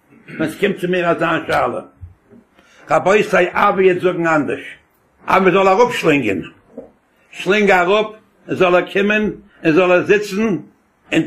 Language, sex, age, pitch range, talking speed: English, male, 70-89, 160-195 Hz, 145 wpm